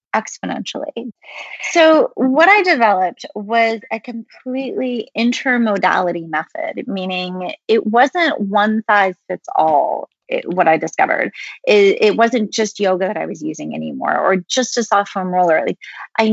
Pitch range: 185-235 Hz